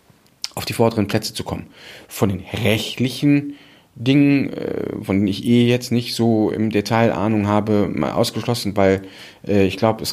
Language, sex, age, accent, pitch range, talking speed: German, male, 40-59, German, 100-130 Hz, 160 wpm